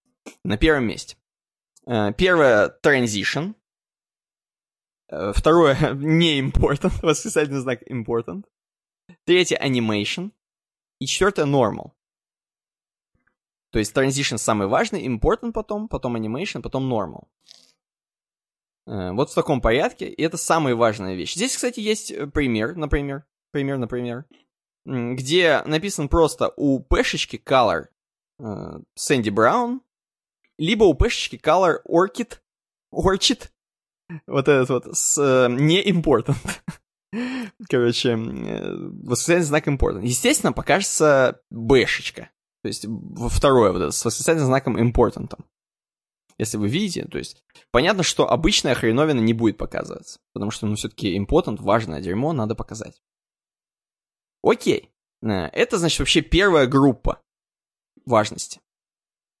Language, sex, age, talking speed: Russian, male, 20-39, 110 wpm